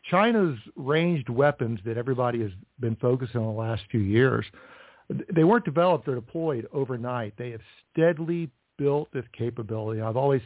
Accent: American